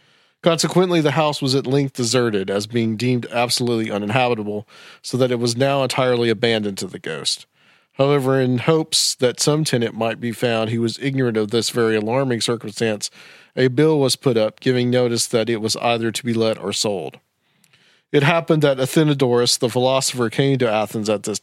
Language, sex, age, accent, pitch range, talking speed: English, male, 40-59, American, 115-140 Hz, 185 wpm